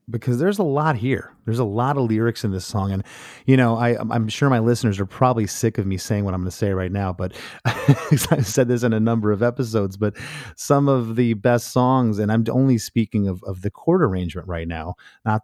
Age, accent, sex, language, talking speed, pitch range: 30-49, American, male, English, 240 wpm, 95-120 Hz